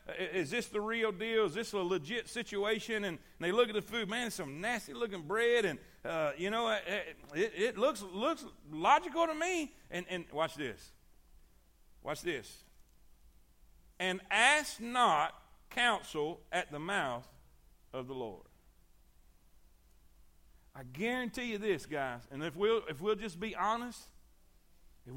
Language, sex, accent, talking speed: English, male, American, 150 wpm